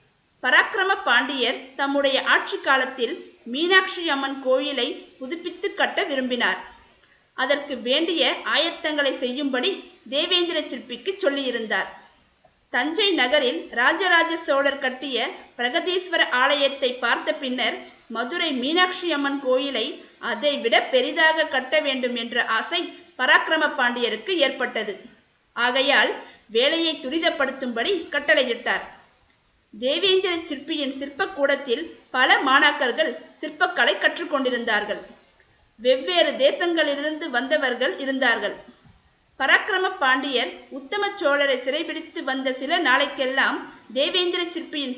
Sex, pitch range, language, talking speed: female, 255-330 Hz, Tamil, 85 wpm